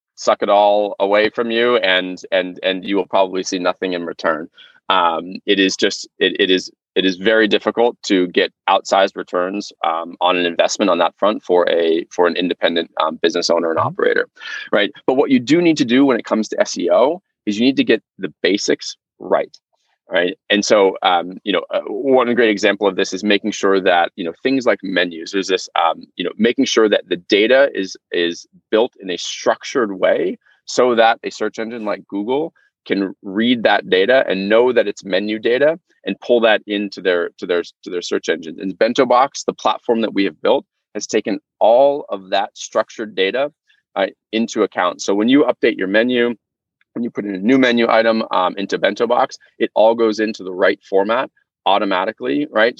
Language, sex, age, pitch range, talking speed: English, male, 30-49, 95-125 Hz, 205 wpm